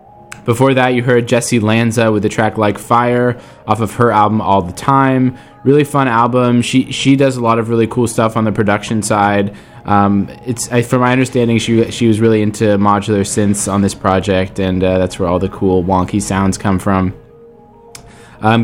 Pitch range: 105-125 Hz